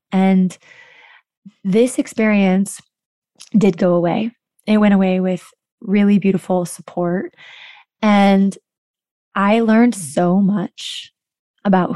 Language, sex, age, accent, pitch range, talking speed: English, female, 20-39, American, 185-215 Hz, 95 wpm